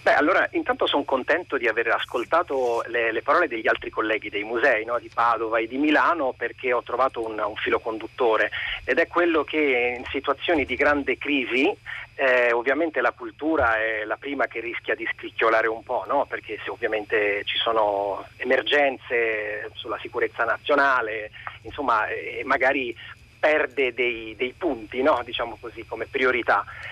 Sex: male